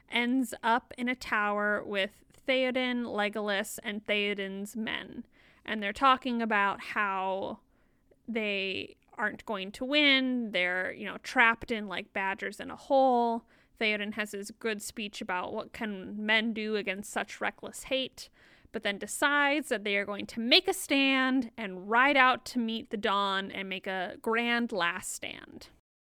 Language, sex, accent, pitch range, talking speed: English, female, American, 210-260 Hz, 160 wpm